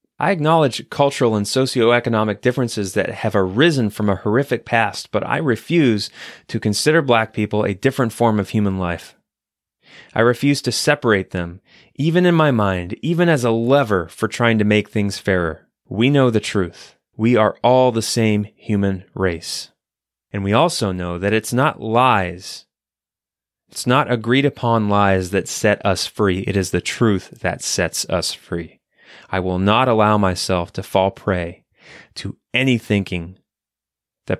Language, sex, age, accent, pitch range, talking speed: English, male, 30-49, American, 95-125 Hz, 160 wpm